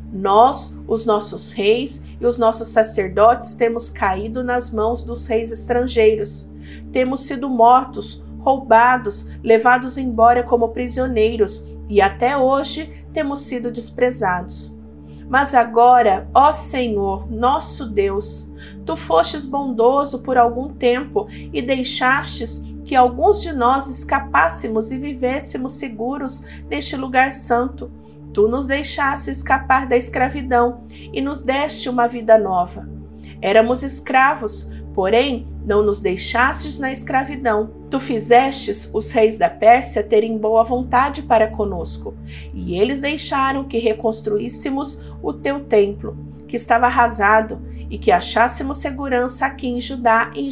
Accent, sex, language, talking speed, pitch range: Brazilian, female, Portuguese, 125 wpm, 200-265 Hz